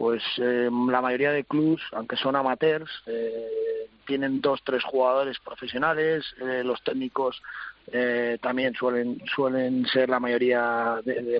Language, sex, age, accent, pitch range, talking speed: Spanish, male, 30-49, Spanish, 120-140 Hz, 140 wpm